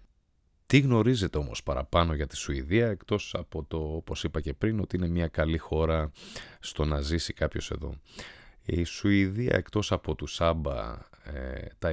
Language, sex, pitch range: Greek, male, 75-100 Hz